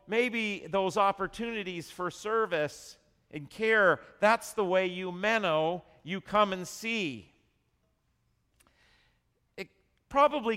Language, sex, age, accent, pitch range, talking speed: English, male, 40-59, American, 150-200 Hz, 100 wpm